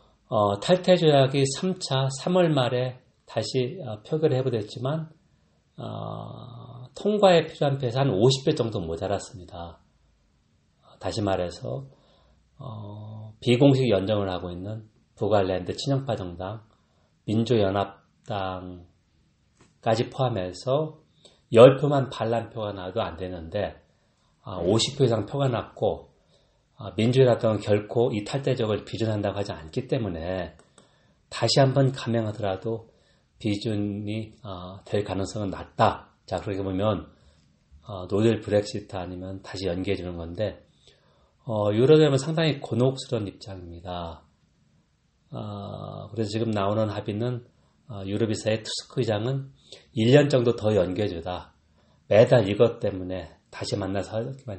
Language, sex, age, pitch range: Korean, male, 40-59, 95-130 Hz